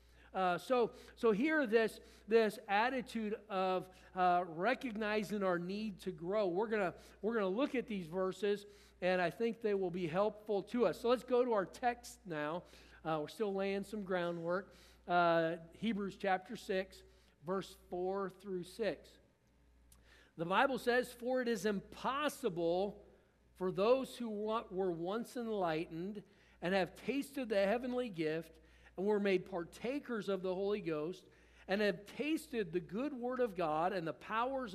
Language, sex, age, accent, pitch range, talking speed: English, male, 50-69, American, 175-230 Hz, 155 wpm